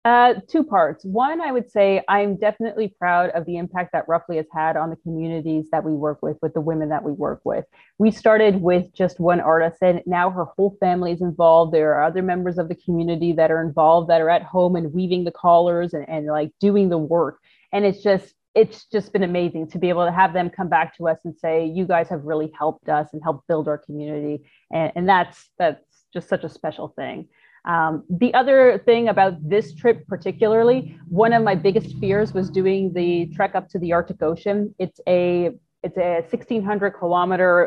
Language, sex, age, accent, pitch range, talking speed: English, female, 30-49, American, 165-200 Hz, 215 wpm